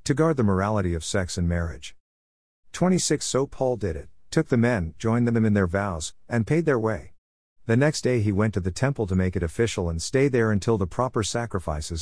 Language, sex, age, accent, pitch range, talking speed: English, male, 50-69, American, 85-115 Hz, 220 wpm